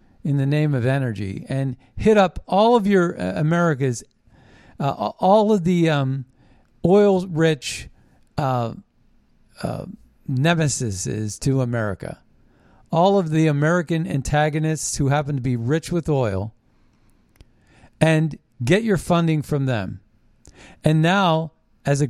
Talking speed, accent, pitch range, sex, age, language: 120 wpm, American, 125-175 Hz, male, 50-69, English